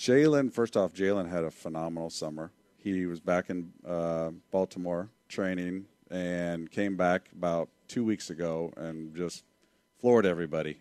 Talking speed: 145 wpm